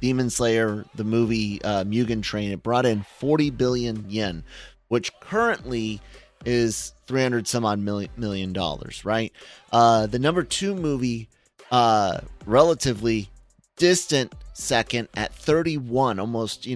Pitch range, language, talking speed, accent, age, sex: 105-125 Hz, English, 130 wpm, American, 30-49, male